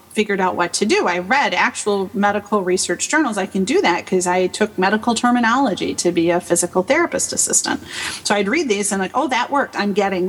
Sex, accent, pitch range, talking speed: female, American, 190-245 Hz, 215 wpm